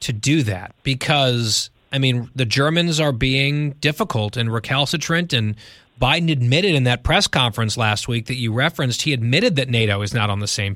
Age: 30-49